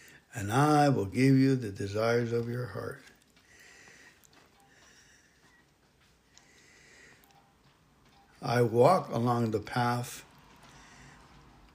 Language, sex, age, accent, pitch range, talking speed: English, male, 60-79, American, 115-140 Hz, 75 wpm